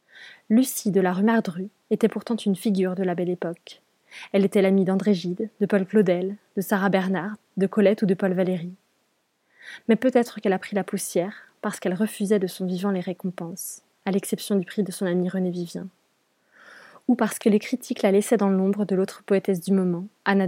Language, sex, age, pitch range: French, female, 20-39, 190-215 Hz